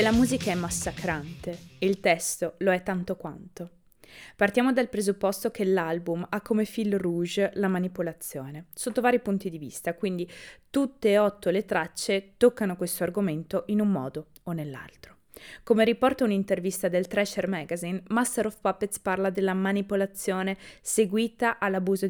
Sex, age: female, 20-39